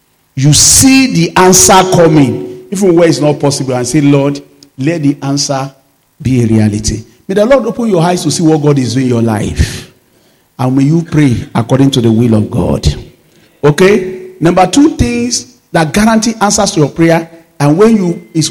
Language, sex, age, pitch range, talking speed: English, male, 40-59, 145-205 Hz, 190 wpm